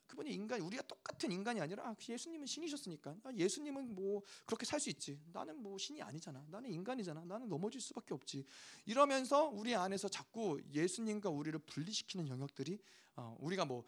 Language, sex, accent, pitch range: Korean, male, native, 175-245 Hz